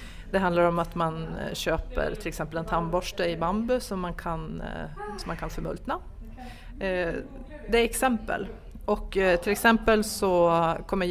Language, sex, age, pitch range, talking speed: Swedish, female, 30-49, 165-220 Hz, 130 wpm